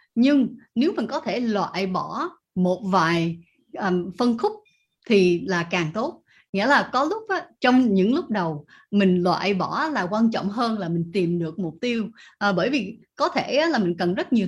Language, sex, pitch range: Vietnamese, female, 185-250 Hz